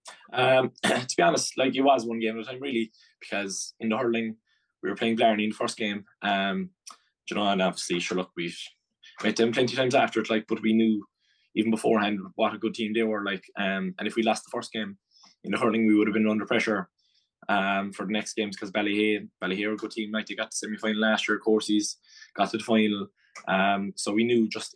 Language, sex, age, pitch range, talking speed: English, male, 20-39, 100-115 Hz, 235 wpm